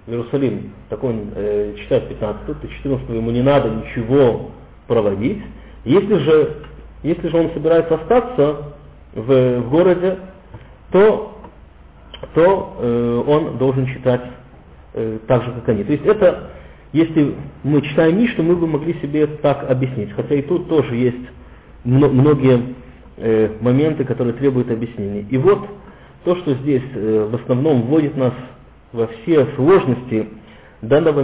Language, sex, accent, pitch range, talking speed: Russian, male, native, 120-150 Hz, 140 wpm